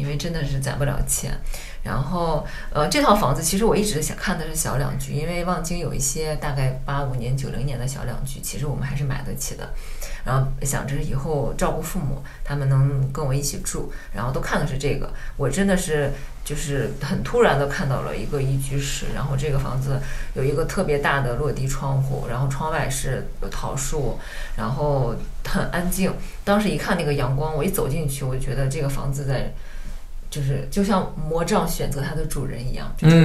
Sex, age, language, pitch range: female, 20-39, Chinese, 135-165 Hz